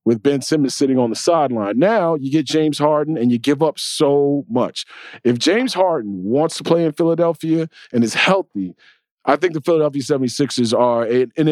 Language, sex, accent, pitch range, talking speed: English, male, American, 115-145 Hz, 190 wpm